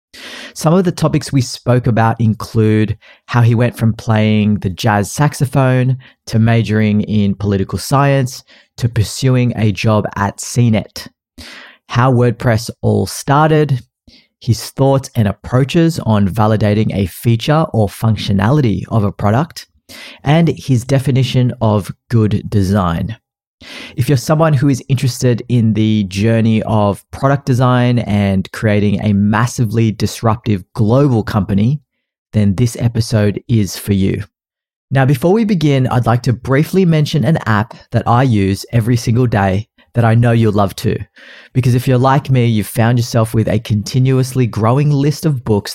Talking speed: 150 wpm